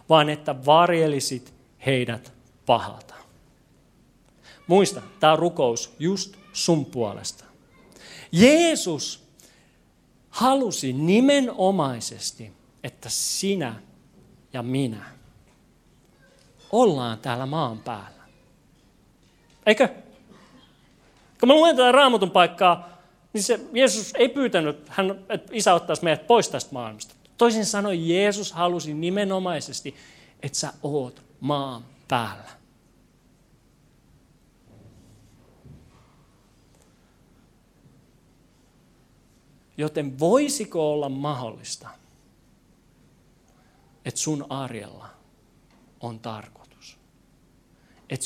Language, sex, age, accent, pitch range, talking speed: Finnish, male, 40-59, native, 125-185 Hz, 75 wpm